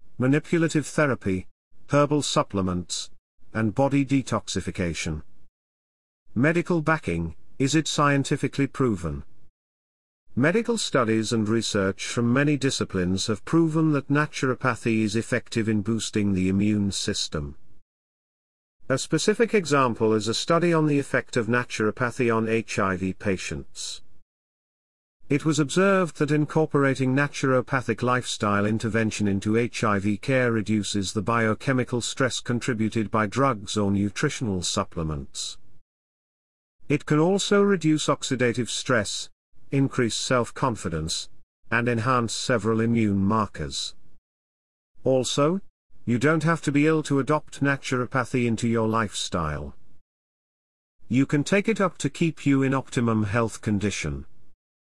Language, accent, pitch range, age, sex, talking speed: English, British, 100-140 Hz, 50-69, male, 115 wpm